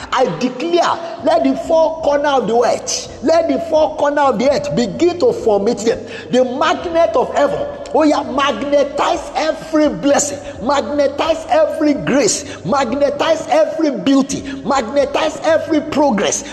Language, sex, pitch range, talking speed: English, male, 275-320 Hz, 140 wpm